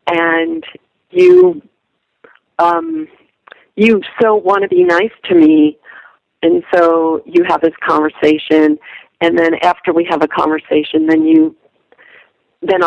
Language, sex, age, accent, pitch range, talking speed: English, female, 40-59, American, 160-210 Hz, 125 wpm